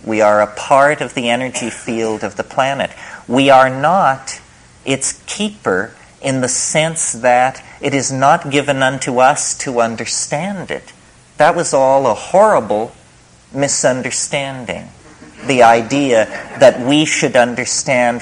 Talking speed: 135 wpm